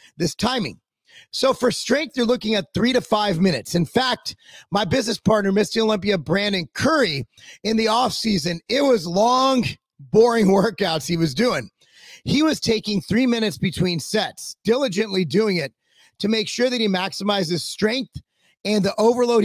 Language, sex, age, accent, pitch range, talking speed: English, male, 30-49, American, 190-235 Hz, 165 wpm